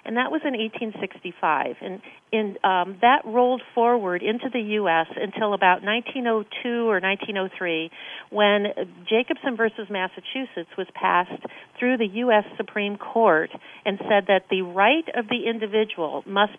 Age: 50-69